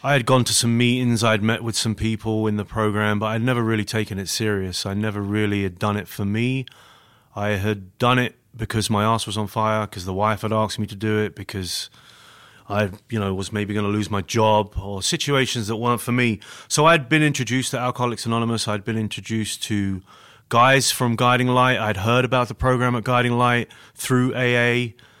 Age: 30-49